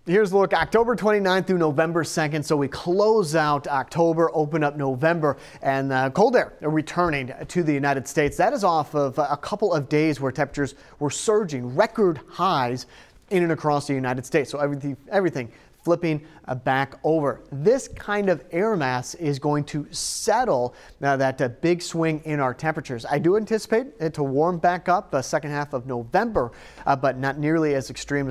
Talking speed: 190 wpm